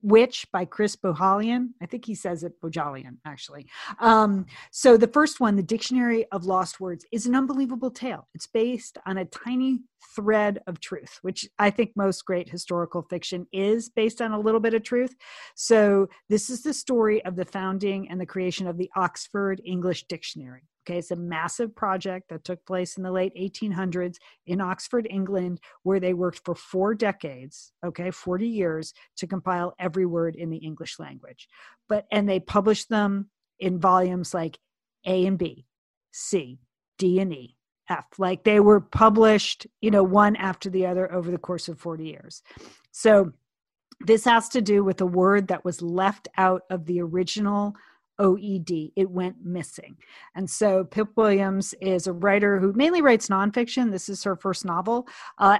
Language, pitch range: English, 180-215 Hz